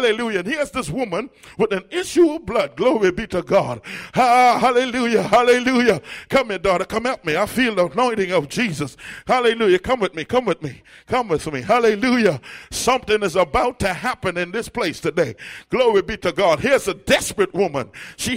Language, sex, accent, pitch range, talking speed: English, male, American, 195-260 Hz, 195 wpm